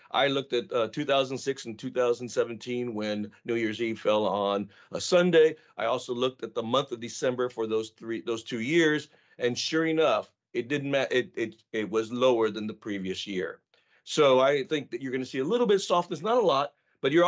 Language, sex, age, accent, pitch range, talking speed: English, male, 40-59, American, 110-140 Hz, 210 wpm